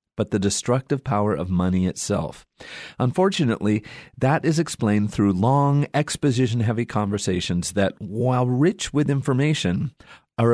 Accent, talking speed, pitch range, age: American, 120 wpm, 100-135 Hz, 40-59